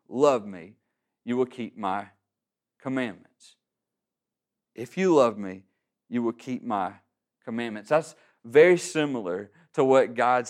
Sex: male